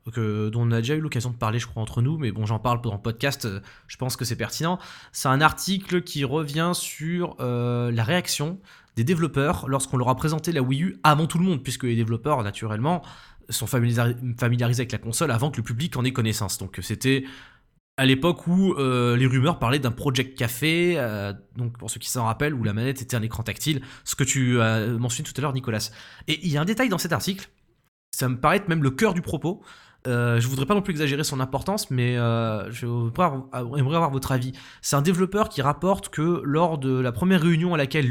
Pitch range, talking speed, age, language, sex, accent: 115-150 Hz, 235 wpm, 20-39, French, male, French